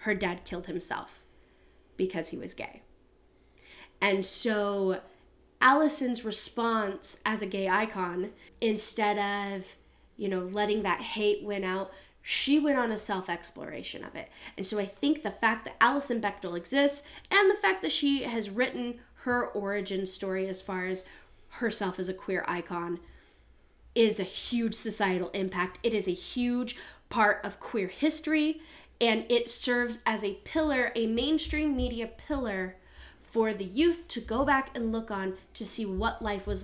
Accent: American